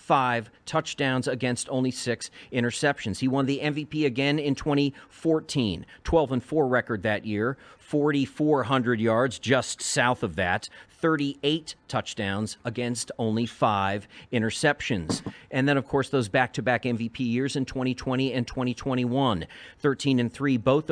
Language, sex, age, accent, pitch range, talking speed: English, male, 40-59, American, 115-145 Hz, 135 wpm